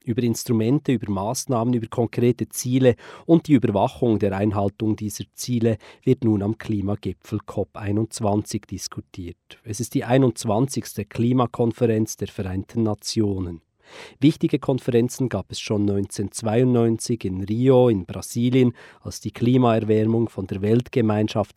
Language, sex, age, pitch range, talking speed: German, male, 40-59, 105-125 Hz, 120 wpm